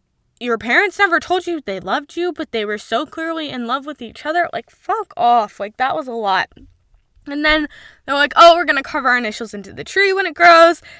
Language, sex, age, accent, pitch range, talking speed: English, female, 10-29, American, 210-320 Hz, 230 wpm